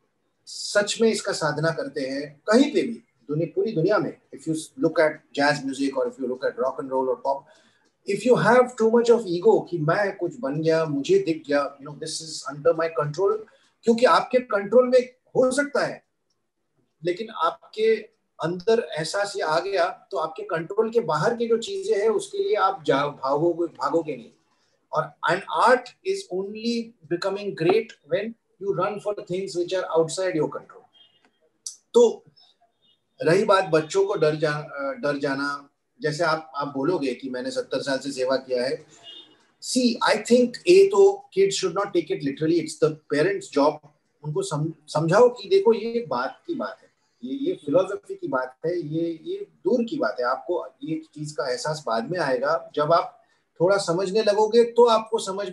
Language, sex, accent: Hindi, male, native